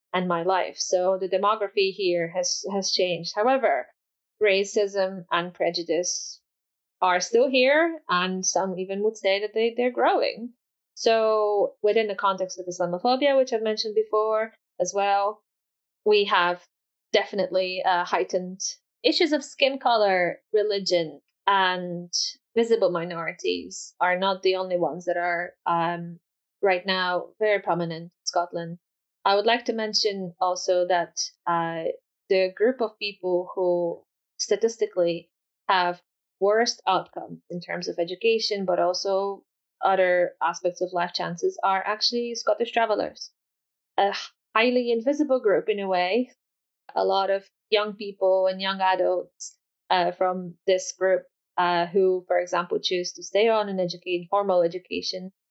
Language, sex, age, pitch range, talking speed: English, female, 20-39, 180-215 Hz, 140 wpm